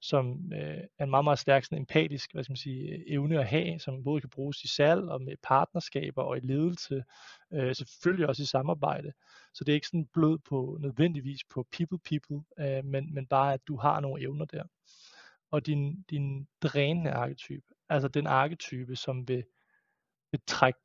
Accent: native